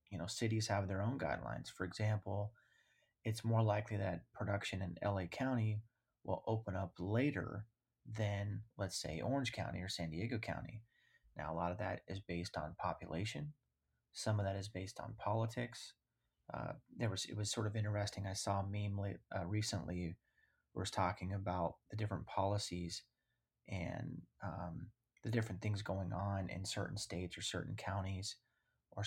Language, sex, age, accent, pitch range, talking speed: English, male, 30-49, American, 90-110 Hz, 170 wpm